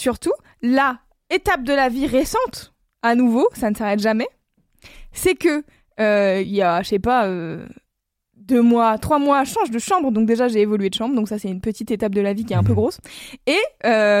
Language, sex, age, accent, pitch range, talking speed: French, female, 20-39, French, 215-265 Hz, 225 wpm